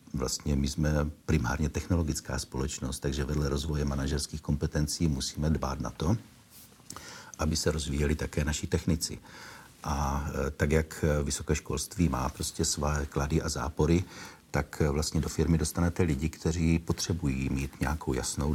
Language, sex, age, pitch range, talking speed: Czech, male, 60-79, 75-85 Hz, 140 wpm